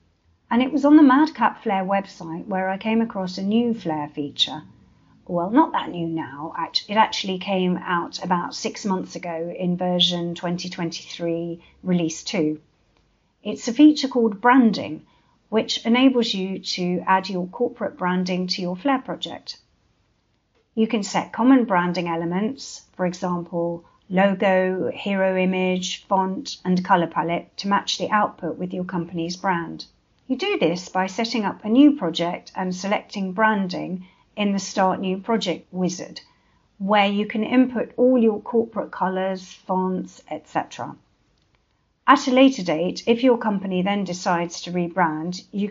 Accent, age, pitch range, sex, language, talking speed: British, 50-69, 175-215 Hz, female, English, 150 wpm